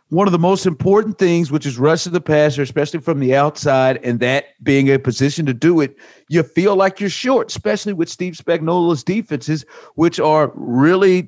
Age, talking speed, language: 50-69, 190 wpm, English